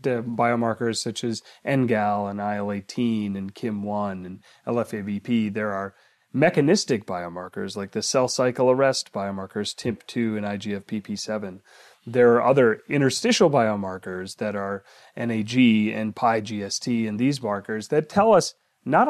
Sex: male